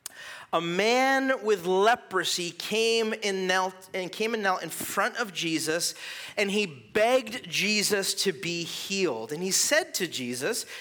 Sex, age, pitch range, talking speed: male, 40-59, 190-255 Hz, 150 wpm